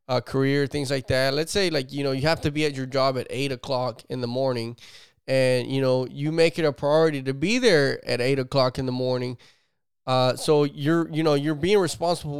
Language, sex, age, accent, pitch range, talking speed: English, male, 20-39, American, 130-155 Hz, 230 wpm